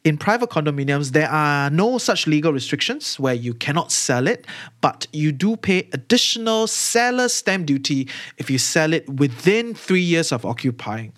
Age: 20-39